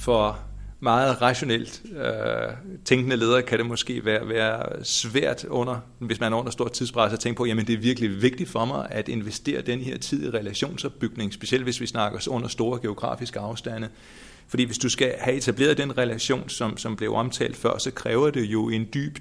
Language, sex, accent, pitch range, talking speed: Danish, male, native, 110-125 Hz, 195 wpm